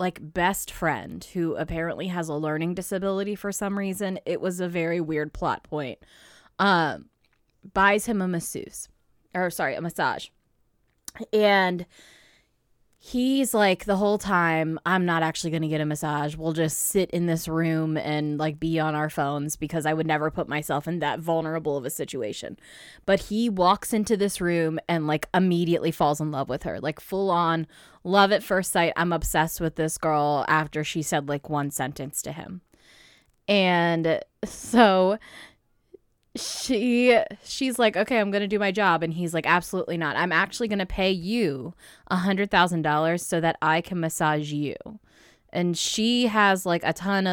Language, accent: English, American